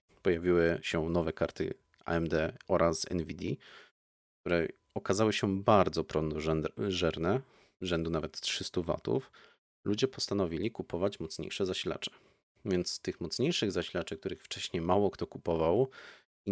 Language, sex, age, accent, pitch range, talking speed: Polish, male, 30-49, native, 80-95 Hz, 115 wpm